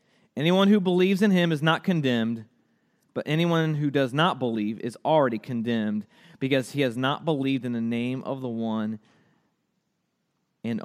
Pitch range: 160-215 Hz